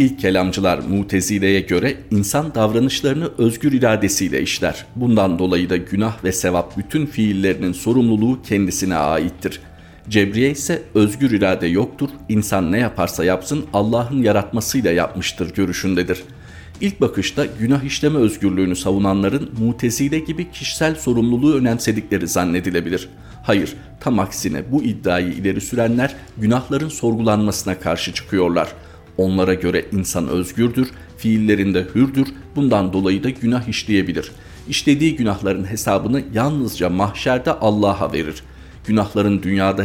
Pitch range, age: 95-115 Hz, 50-69